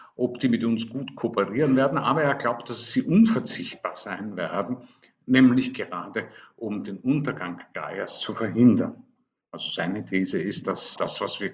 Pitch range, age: 105-140 Hz, 50-69